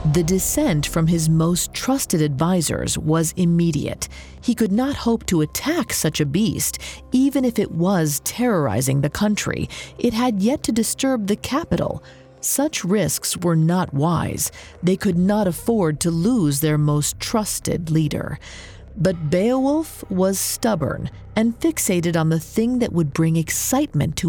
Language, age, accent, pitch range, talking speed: English, 40-59, American, 155-225 Hz, 150 wpm